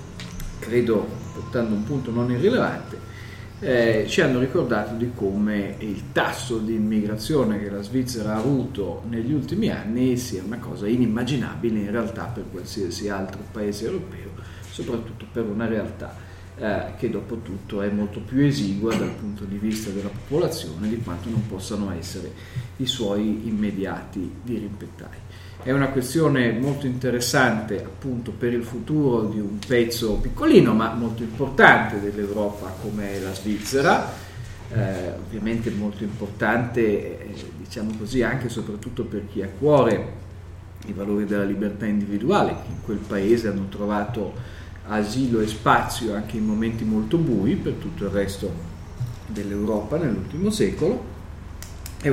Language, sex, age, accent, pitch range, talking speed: Italian, male, 40-59, native, 100-120 Hz, 140 wpm